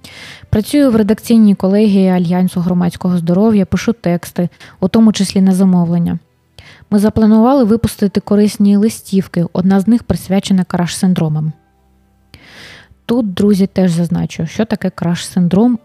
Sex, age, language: female, 20-39, Ukrainian